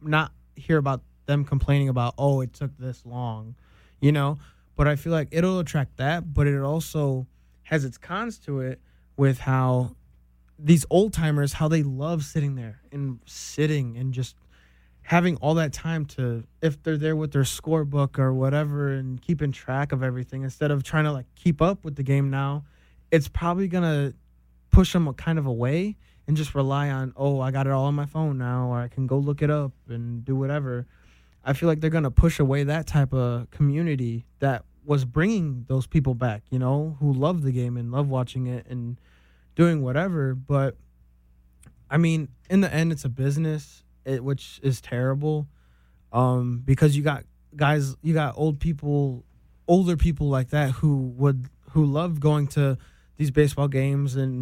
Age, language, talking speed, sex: 20-39, English, 185 wpm, male